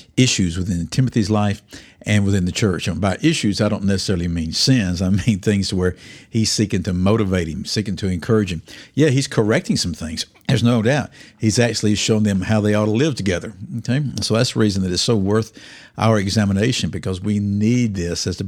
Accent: American